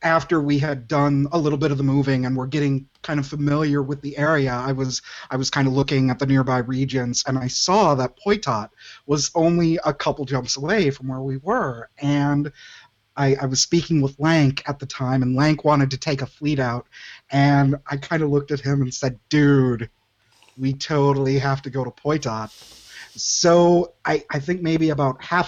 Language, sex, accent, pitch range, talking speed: English, male, American, 130-155 Hz, 205 wpm